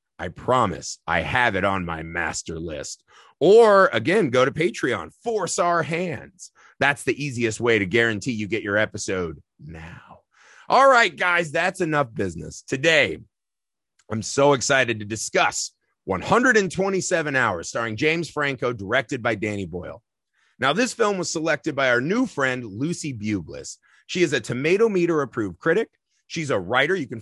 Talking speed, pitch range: 160 wpm, 115-170 Hz